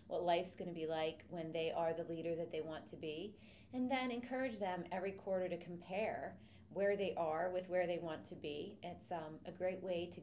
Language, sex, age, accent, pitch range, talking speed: English, female, 30-49, American, 160-185 Hz, 225 wpm